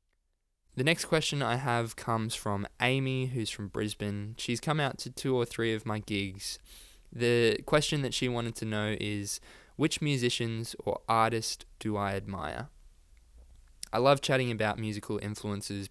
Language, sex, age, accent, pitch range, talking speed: English, male, 10-29, Australian, 100-120 Hz, 160 wpm